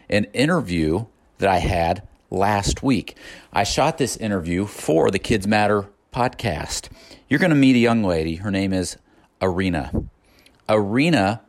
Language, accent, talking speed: English, American, 145 wpm